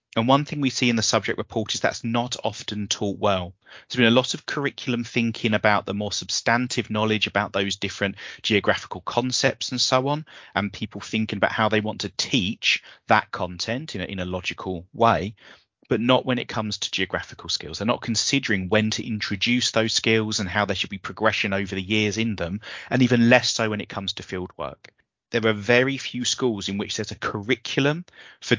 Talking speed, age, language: 205 wpm, 30-49, English